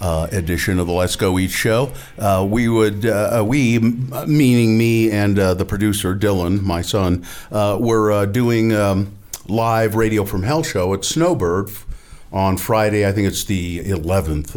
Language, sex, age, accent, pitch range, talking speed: English, male, 50-69, American, 95-120 Hz, 175 wpm